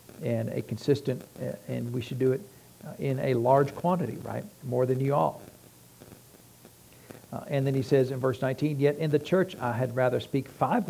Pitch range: 120-140 Hz